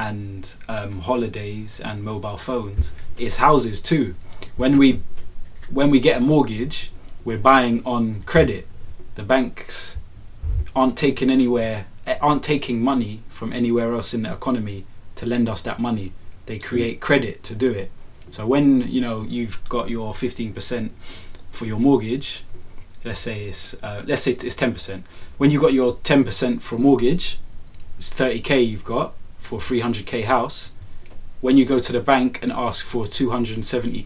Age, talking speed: 20-39, 160 wpm